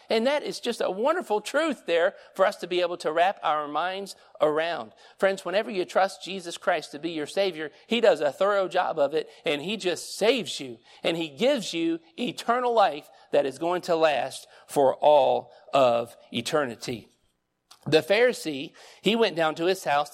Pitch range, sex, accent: 145-195 Hz, male, American